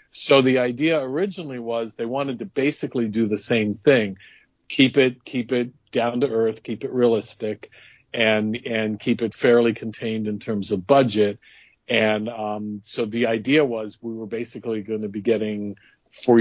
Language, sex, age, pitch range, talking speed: English, male, 50-69, 110-125 Hz, 170 wpm